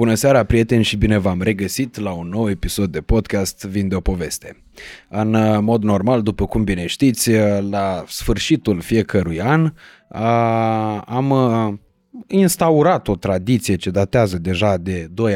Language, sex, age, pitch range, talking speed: Romanian, male, 20-39, 105-135 Hz, 145 wpm